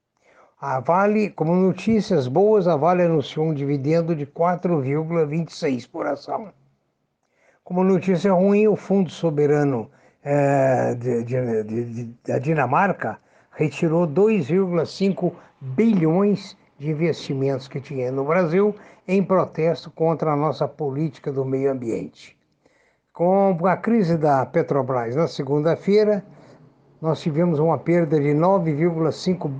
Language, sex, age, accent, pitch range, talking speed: Portuguese, male, 60-79, Brazilian, 140-185 Hz, 120 wpm